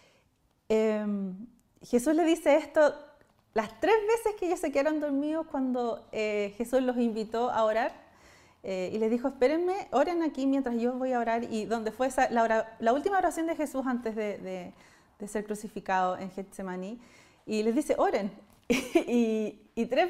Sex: female